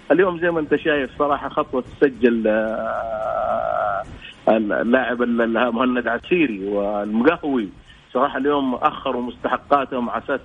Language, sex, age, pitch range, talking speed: Arabic, male, 50-69, 135-180 Hz, 105 wpm